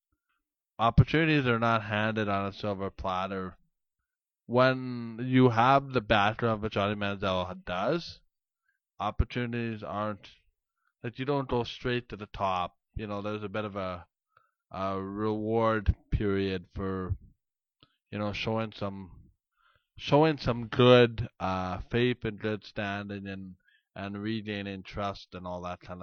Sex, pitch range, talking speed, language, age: male, 100-115 Hz, 135 wpm, English, 20-39